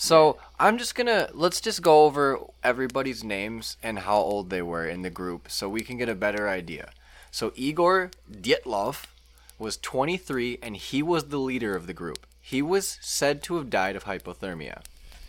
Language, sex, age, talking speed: English, male, 20-39, 185 wpm